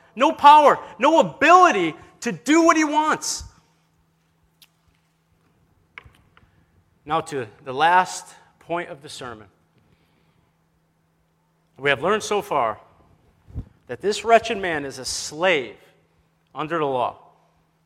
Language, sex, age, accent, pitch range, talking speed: English, male, 40-59, American, 135-185 Hz, 110 wpm